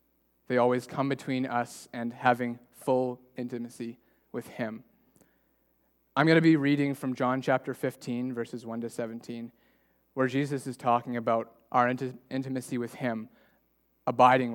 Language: English